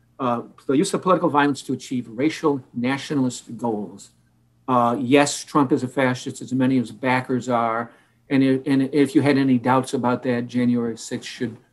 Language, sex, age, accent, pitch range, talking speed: English, male, 60-79, American, 125-145 Hz, 185 wpm